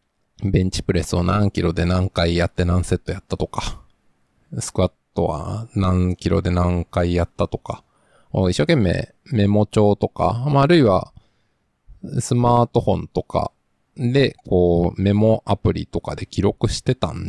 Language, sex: Japanese, male